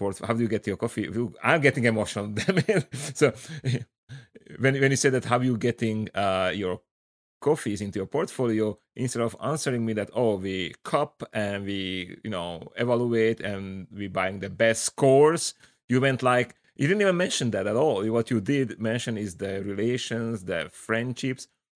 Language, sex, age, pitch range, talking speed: English, male, 30-49, 100-125 Hz, 175 wpm